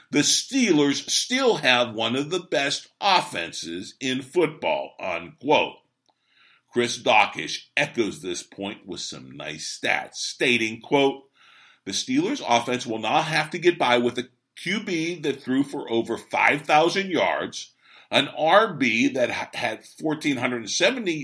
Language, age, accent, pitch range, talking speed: English, 50-69, American, 110-155 Hz, 130 wpm